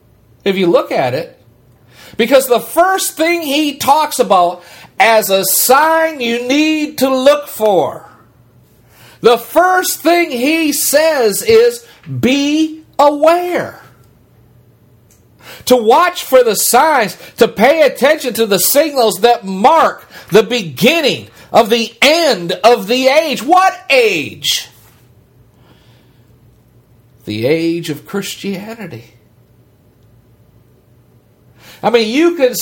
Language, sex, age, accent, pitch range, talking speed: English, male, 50-69, American, 185-285 Hz, 110 wpm